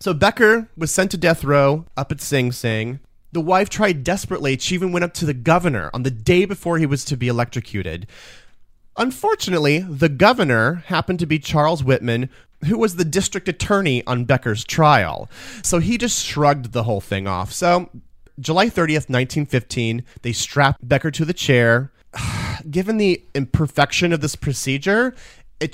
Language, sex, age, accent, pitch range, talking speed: English, male, 30-49, American, 120-175 Hz, 170 wpm